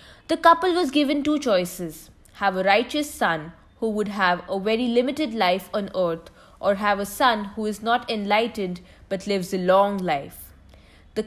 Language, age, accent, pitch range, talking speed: English, 20-39, Indian, 185-250 Hz, 175 wpm